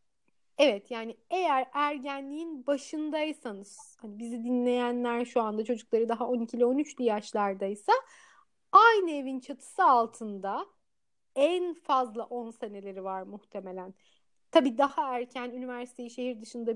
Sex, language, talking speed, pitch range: female, Turkish, 110 wpm, 220-290 Hz